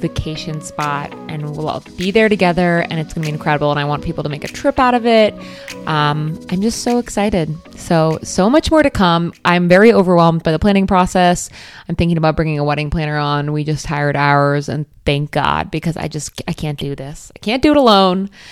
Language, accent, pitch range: English, American, 150-180 Hz